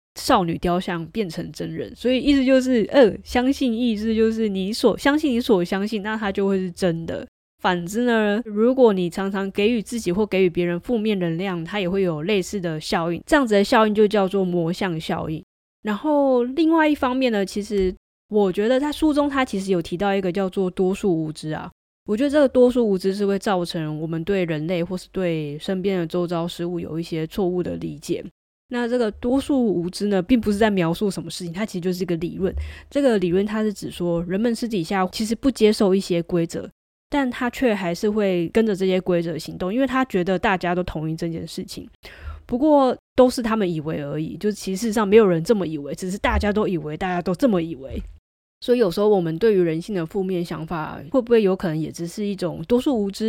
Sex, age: female, 20-39